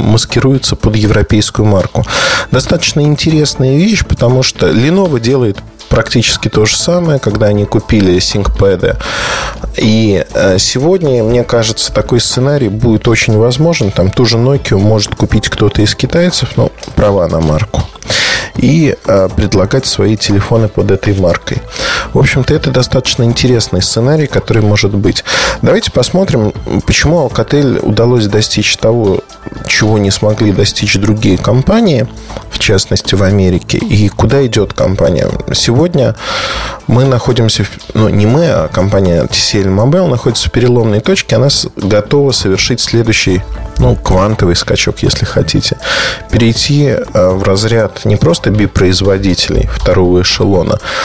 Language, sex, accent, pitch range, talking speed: Russian, male, native, 105-130 Hz, 130 wpm